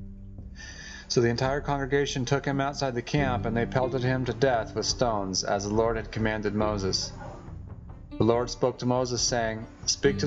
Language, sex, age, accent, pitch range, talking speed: English, male, 30-49, American, 105-130 Hz, 180 wpm